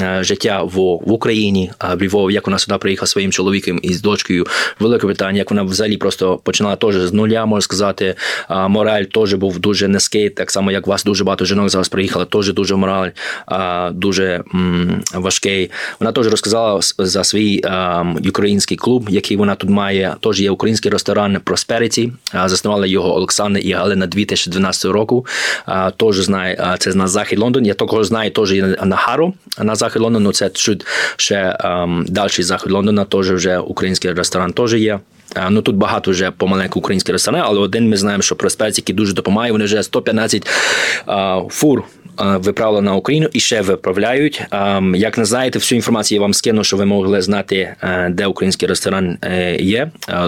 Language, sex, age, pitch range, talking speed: Ukrainian, male, 20-39, 95-105 Hz, 175 wpm